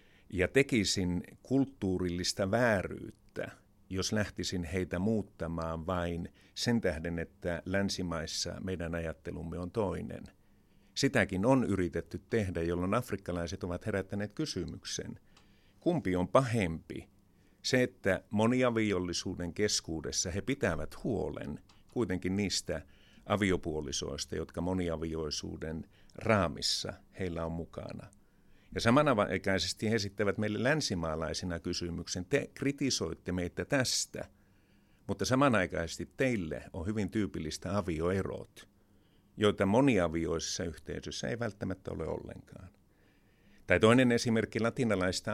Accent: native